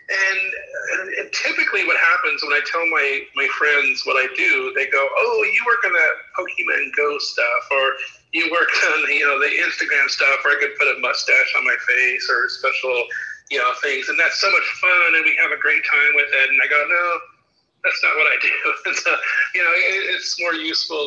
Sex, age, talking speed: male, 40-59, 220 wpm